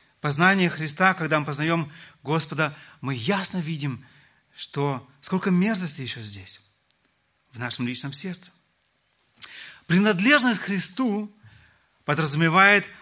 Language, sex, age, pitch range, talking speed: Russian, male, 30-49, 140-195 Hz, 100 wpm